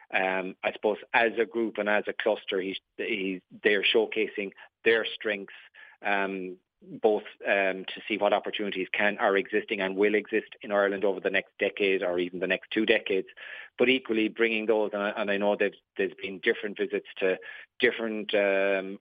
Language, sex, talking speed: English, male, 185 wpm